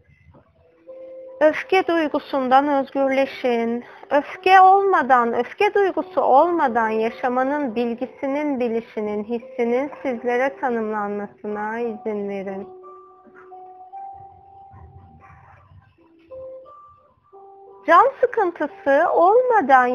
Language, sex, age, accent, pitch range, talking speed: Turkish, female, 30-49, native, 220-330 Hz, 55 wpm